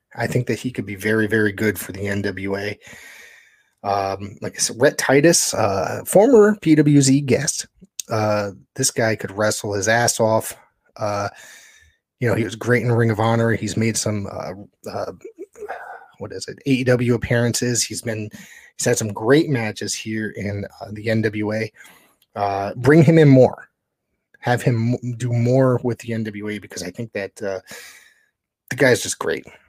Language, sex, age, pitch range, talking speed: English, male, 30-49, 105-125 Hz, 170 wpm